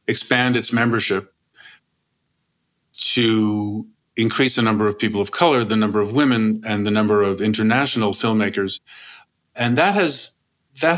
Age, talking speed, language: 50-69, 135 wpm, English